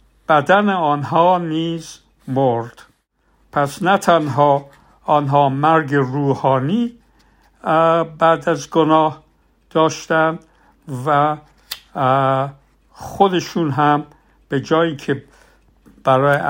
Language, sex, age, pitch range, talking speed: Persian, male, 60-79, 140-185 Hz, 75 wpm